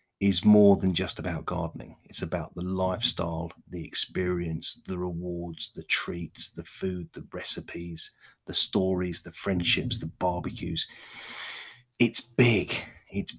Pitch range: 85-105 Hz